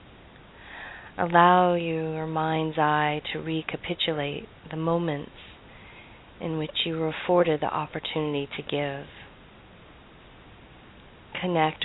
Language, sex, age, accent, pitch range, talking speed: English, female, 30-49, American, 145-160 Hz, 90 wpm